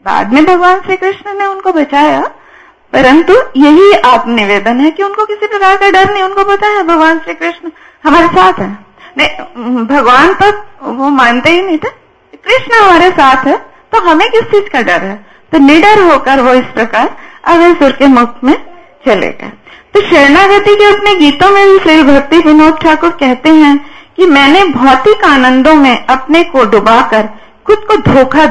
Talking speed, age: 175 wpm, 50-69